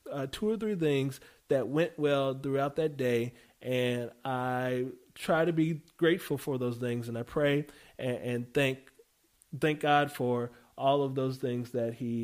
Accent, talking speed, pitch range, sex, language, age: American, 170 wpm, 120-185 Hz, male, English, 30-49